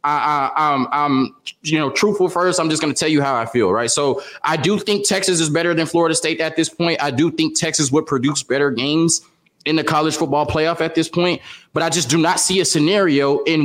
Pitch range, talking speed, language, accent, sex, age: 145-180 Hz, 240 wpm, English, American, male, 20-39